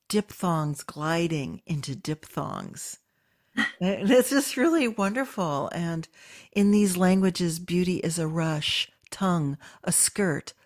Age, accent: 60-79, American